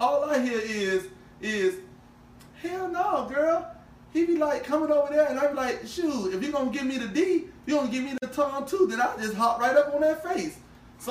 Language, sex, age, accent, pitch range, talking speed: English, male, 30-49, American, 215-295 Hz, 245 wpm